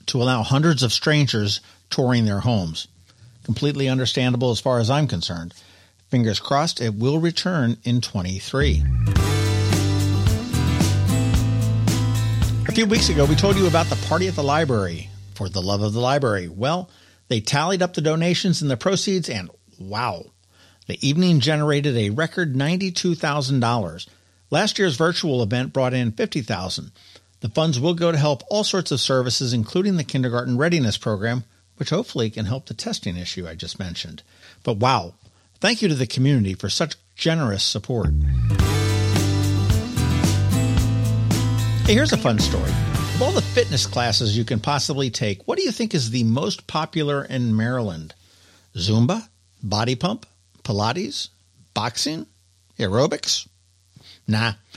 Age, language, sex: 50-69, English, male